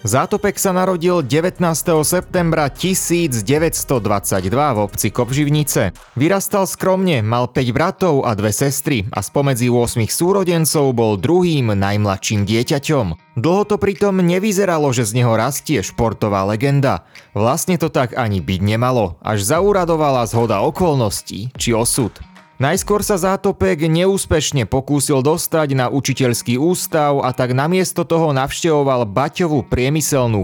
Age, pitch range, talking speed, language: 30-49, 115-170 Hz, 125 wpm, Slovak